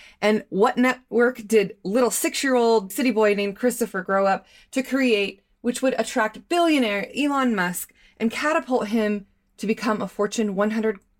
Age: 30-49